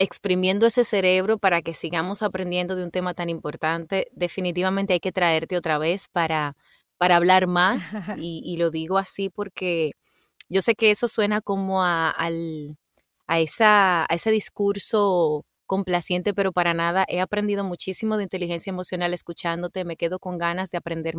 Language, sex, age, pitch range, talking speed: Spanish, female, 30-49, 170-200 Hz, 160 wpm